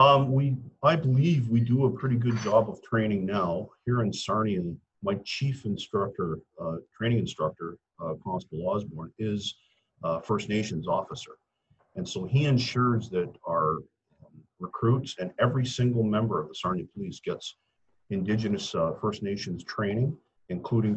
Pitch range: 100-125 Hz